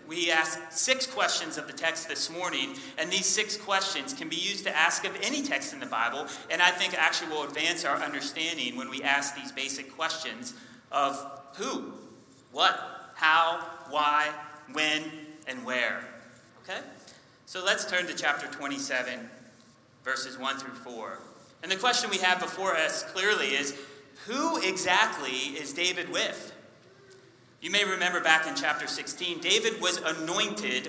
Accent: American